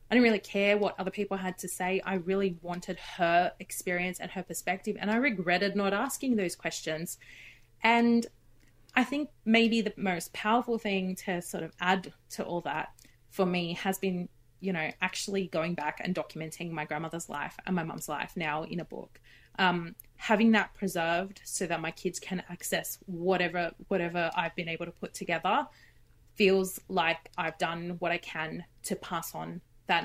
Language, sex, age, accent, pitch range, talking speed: English, female, 20-39, Australian, 170-200 Hz, 180 wpm